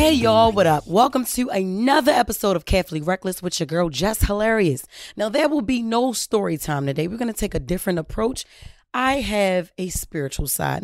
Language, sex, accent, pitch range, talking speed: English, female, American, 160-210 Hz, 200 wpm